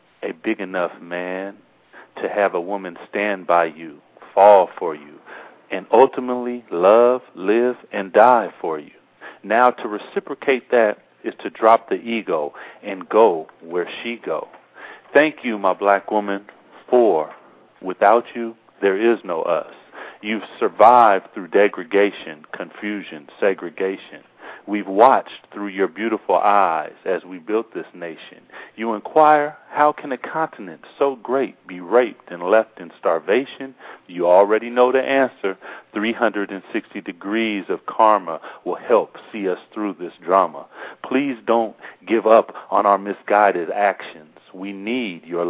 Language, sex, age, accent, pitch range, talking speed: English, male, 50-69, American, 95-120 Hz, 140 wpm